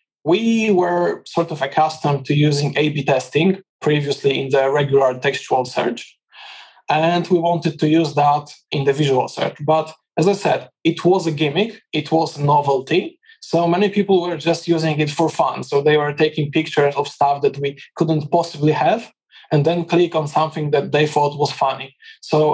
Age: 20-39